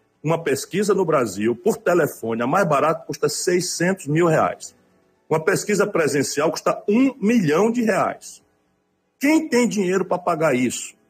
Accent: Brazilian